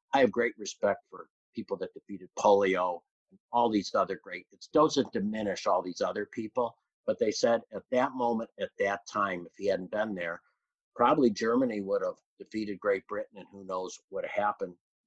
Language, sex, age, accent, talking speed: English, male, 50-69, American, 185 wpm